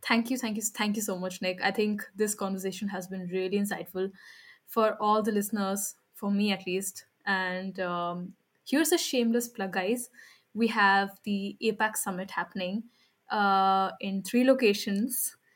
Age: 10-29